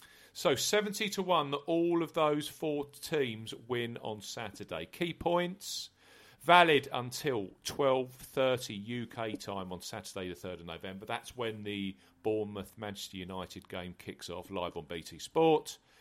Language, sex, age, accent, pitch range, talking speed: English, male, 40-59, British, 100-140 Hz, 145 wpm